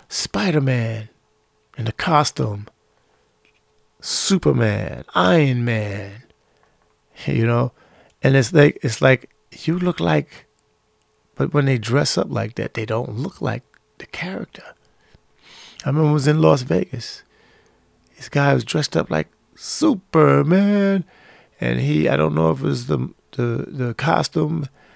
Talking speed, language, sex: 140 wpm, English, male